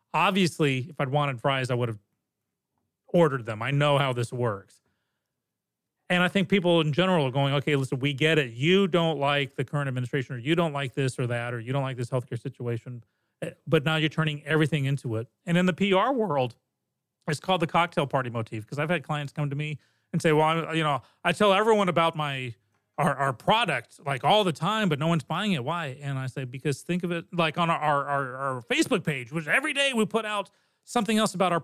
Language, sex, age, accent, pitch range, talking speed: English, male, 40-59, American, 140-180 Hz, 230 wpm